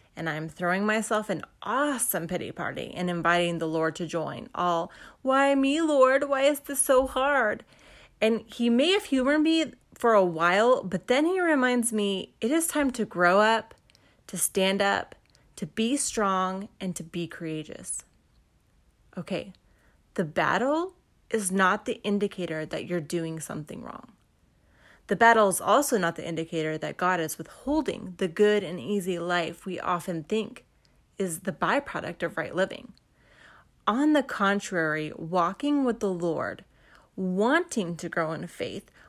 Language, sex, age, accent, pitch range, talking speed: English, female, 30-49, American, 170-235 Hz, 155 wpm